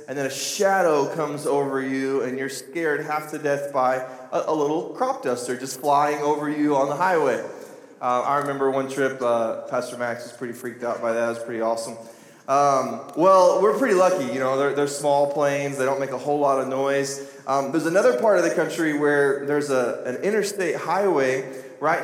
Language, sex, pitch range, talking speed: English, male, 135-155 Hz, 210 wpm